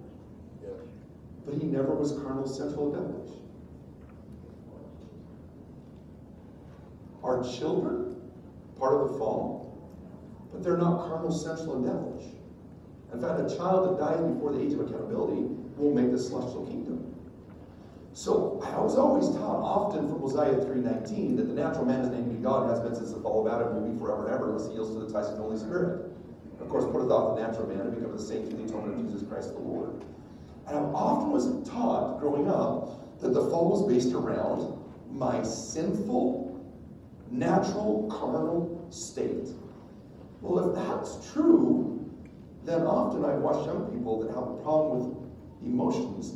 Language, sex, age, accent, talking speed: English, male, 40-59, American, 170 wpm